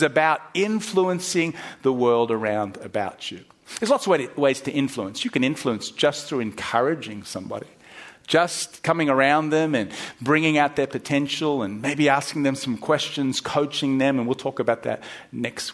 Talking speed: 165 wpm